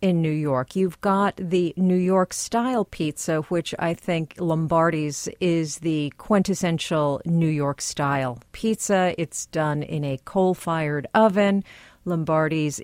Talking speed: 135 wpm